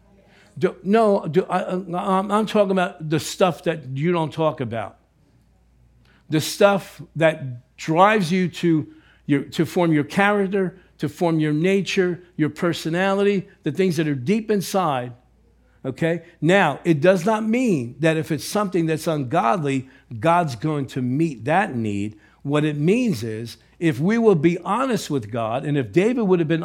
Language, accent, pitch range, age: English, American, 150-190 Hz, 60-79